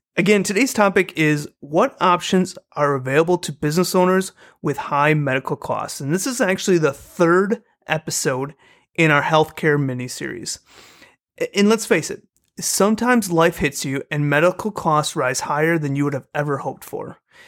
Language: English